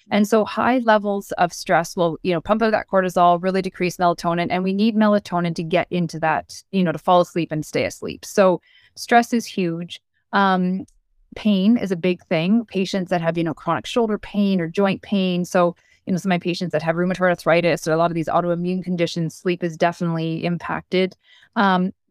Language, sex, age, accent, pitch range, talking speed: English, female, 20-39, American, 170-205 Hz, 205 wpm